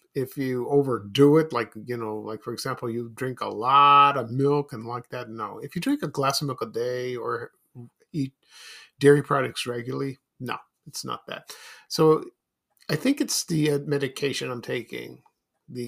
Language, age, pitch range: English, 50-69, 125-155 Hz